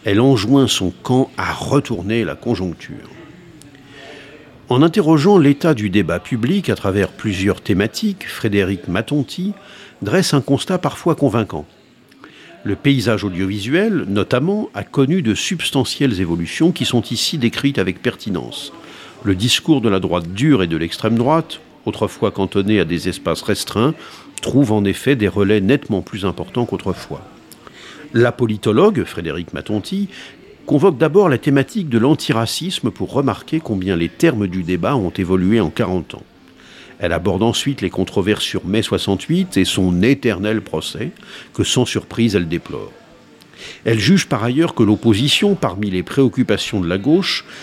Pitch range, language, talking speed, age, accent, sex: 100-145 Hz, French, 145 wpm, 50-69, French, male